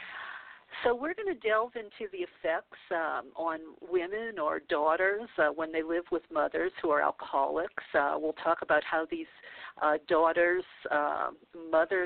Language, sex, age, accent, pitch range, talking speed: English, female, 50-69, American, 155-210 Hz, 160 wpm